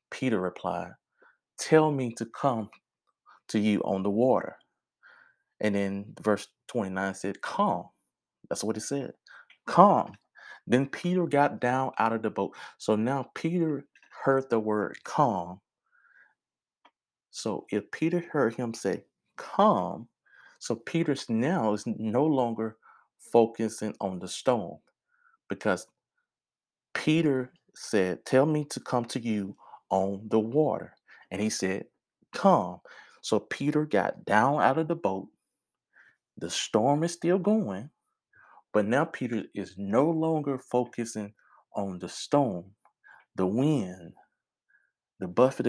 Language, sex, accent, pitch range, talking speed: English, male, American, 100-140 Hz, 125 wpm